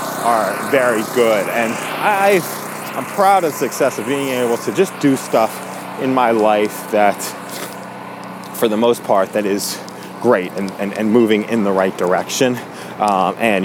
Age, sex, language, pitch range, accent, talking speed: 30-49, male, English, 105-140 Hz, American, 165 wpm